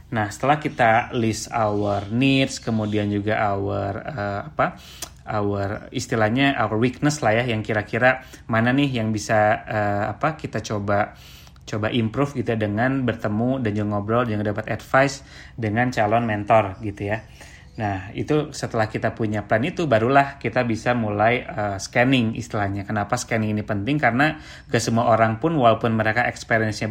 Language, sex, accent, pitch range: Indonesian, male, native, 105-125 Hz